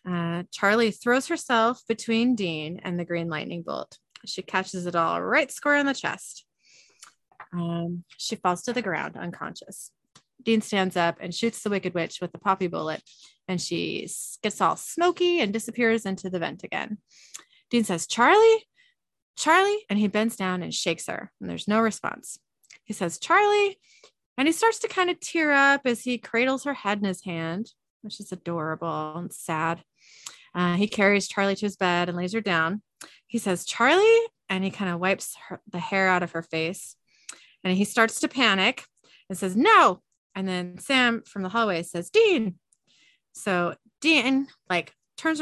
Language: English